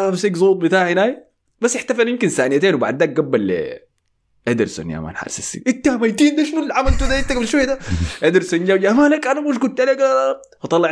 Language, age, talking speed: Arabic, 20-39, 160 wpm